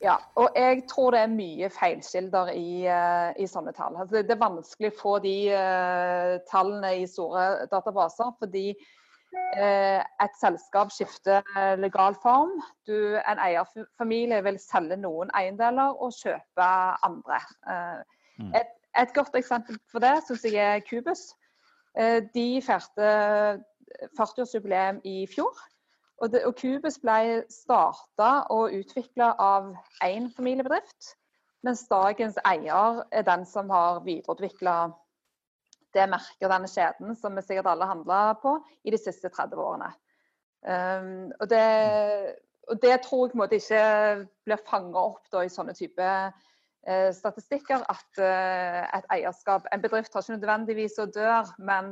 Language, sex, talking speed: English, female, 125 wpm